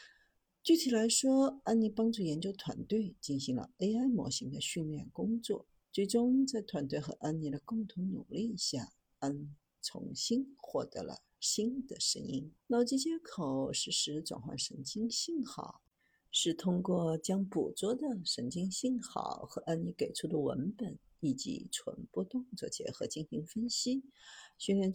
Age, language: 50-69, Chinese